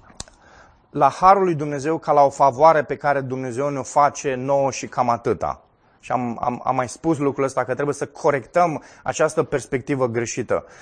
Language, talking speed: Romanian, 180 wpm